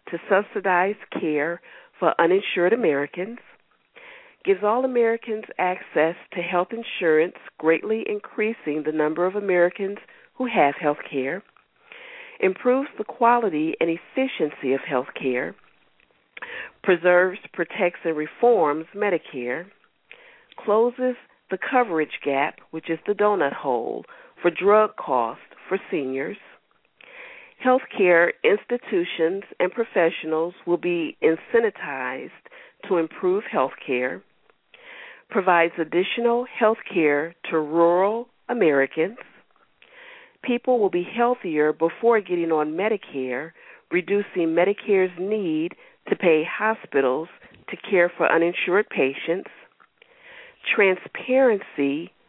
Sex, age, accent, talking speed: female, 50-69, American, 100 wpm